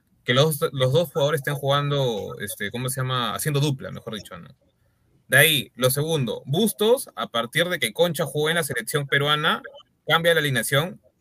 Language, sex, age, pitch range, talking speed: Spanish, male, 20-39, 130-170 Hz, 180 wpm